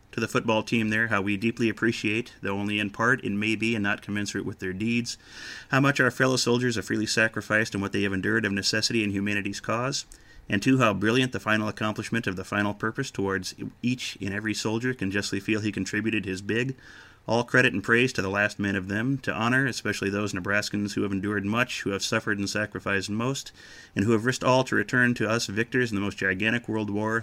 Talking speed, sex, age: 230 wpm, male, 30-49